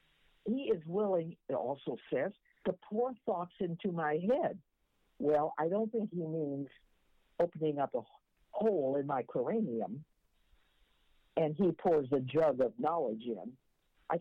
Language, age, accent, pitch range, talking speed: English, 60-79, American, 140-205 Hz, 145 wpm